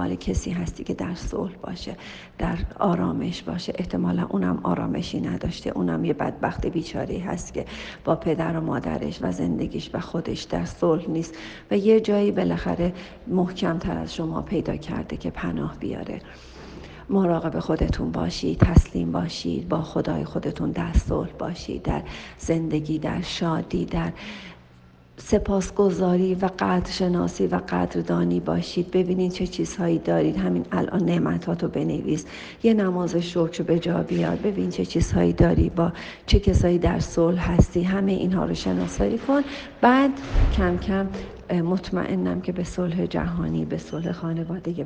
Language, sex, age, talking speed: Persian, female, 40-59, 145 wpm